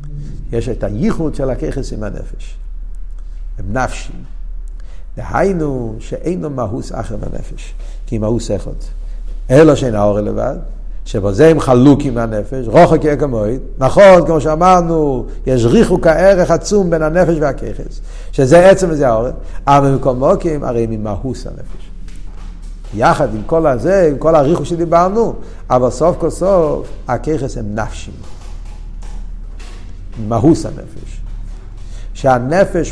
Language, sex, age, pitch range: Hebrew, male, 60-79, 95-145 Hz